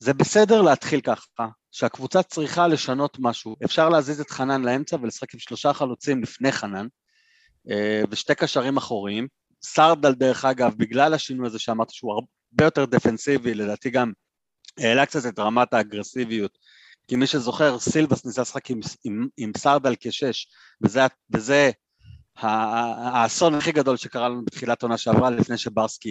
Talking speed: 145 wpm